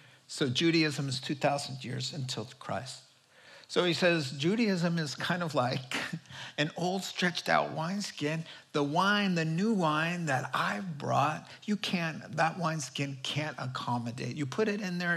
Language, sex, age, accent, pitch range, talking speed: English, male, 50-69, American, 140-190 Hz, 155 wpm